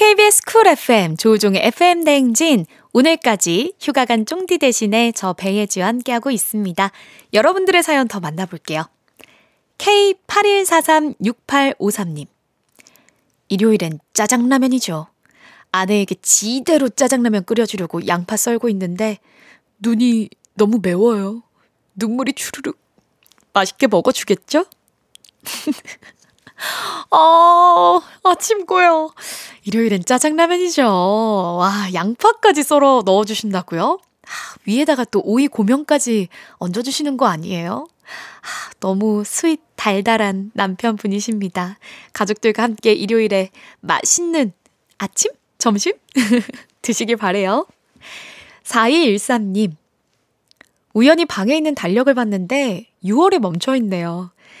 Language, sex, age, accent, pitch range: Korean, female, 20-39, native, 200-290 Hz